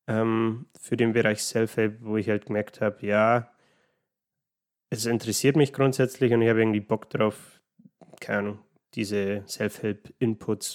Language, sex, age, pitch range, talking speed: German, male, 20-39, 105-120 Hz, 140 wpm